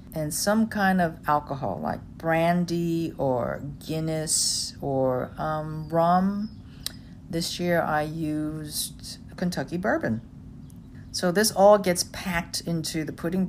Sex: female